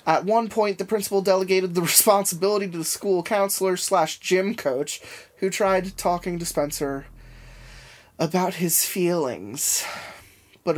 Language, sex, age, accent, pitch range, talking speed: English, male, 20-39, American, 145-185 Hz, 135 wpm